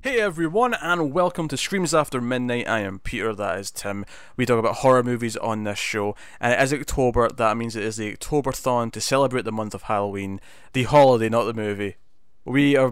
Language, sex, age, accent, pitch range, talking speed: English, male, 20-39, British, 105-135 Hz, 210 wpm